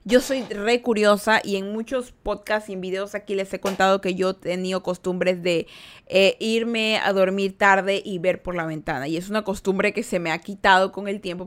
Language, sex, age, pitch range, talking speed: Spanish, female, 20-39, 180-225 Hz, 220 wpm